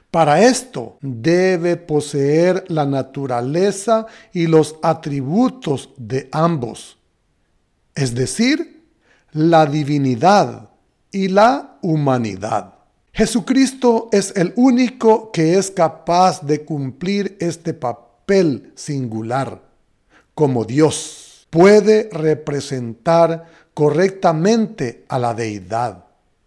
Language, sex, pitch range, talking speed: Spanish, male, 140-195 Hz, 85 wpm